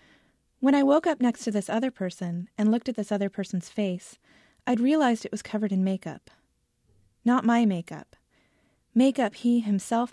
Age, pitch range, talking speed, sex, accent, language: 30-49, 185-245 Hz, 170 wpm, female, American, English